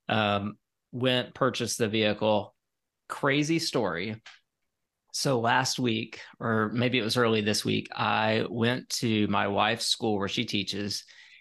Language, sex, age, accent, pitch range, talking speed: English, male, 30-49, American, 110-135 Hz, 135 wpm